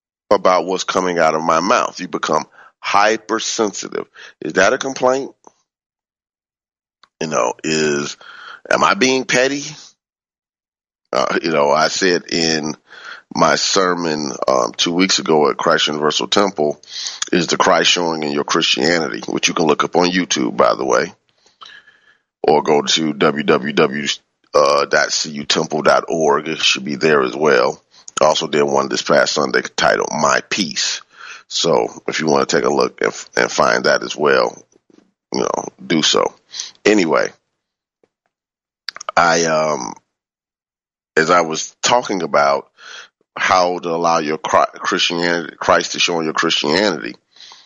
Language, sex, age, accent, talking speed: English, male, 30-49, American, 135 wpm